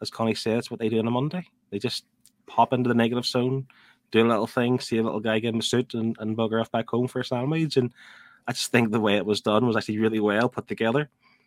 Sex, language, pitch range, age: male, English, 95-115 Hz, 20-39